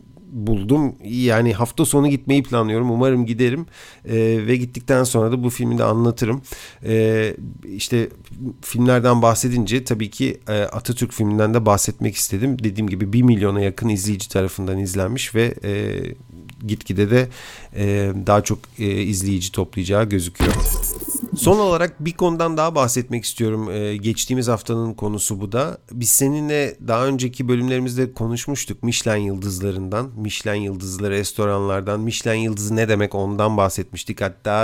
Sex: male